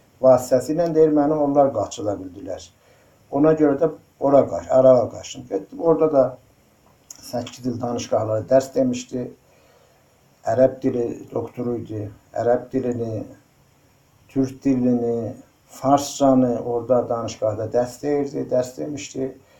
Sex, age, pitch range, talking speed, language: male, 60-79, 115-145 Hz, 105 wpm, Turkish